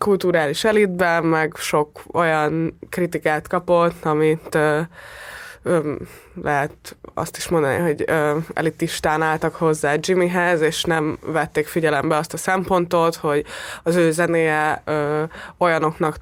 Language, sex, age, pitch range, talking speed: Hungarian, female, 20-39, 155-180 Hz, 120 wpm